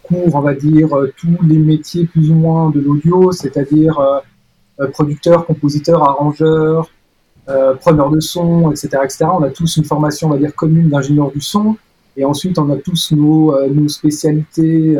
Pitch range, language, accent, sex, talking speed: 140-160 Hz, French, French, male, 165 wpm